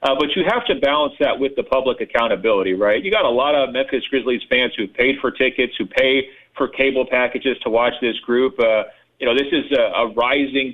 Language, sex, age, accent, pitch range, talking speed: English, male, 40-59, American, 130-155 Hz, 230 wpm